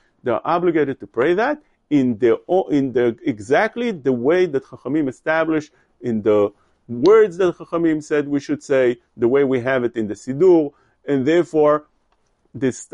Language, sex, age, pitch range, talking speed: English, male, 40-59, 125-180 Hz, 170 wpm